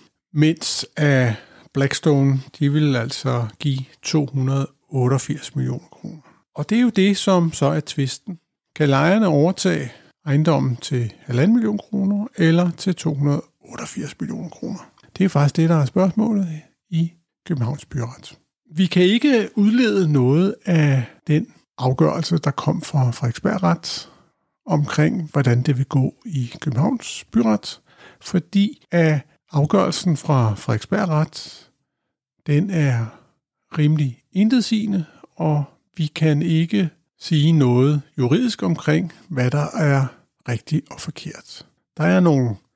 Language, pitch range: Danish, 135-170 Hz